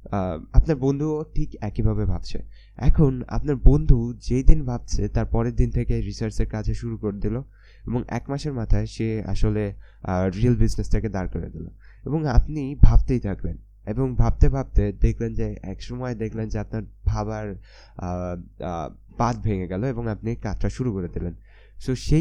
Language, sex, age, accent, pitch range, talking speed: Bengali, male, 20-39, native, 100-125 Hz, 125 wpm